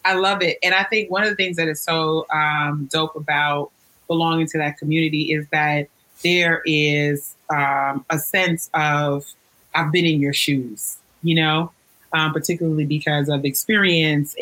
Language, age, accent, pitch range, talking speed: English, 30-49, American, 150-185 Hz, 165 wpm